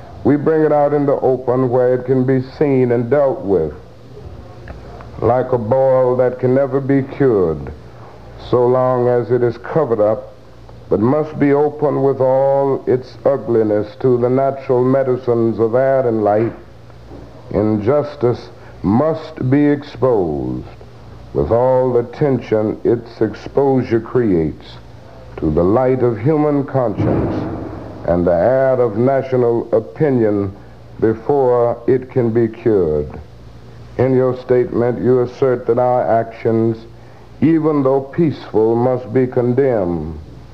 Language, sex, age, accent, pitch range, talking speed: English, male, 60-79, American, 120-135 Hz, 130 wpm